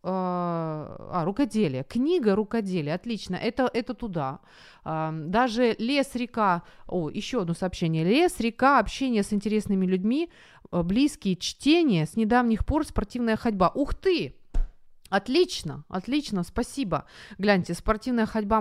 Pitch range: 170-220 Hz